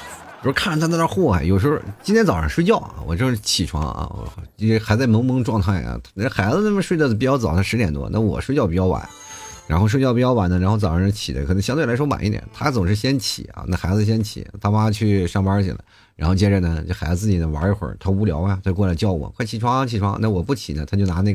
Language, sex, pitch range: Chinese, male, 95-130 Hz